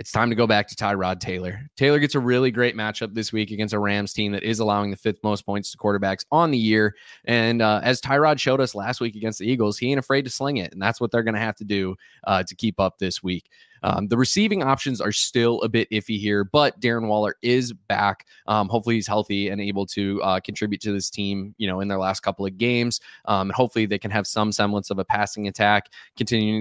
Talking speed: 250 wpm